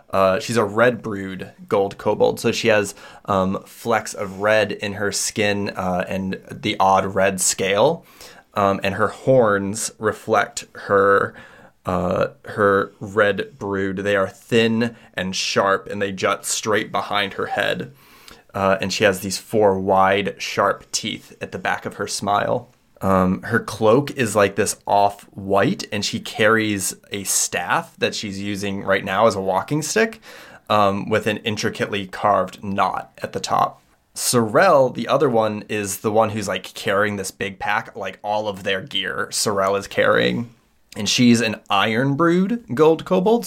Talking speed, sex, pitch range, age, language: 165 wpm, male, 95-110 Hz, 20-39, English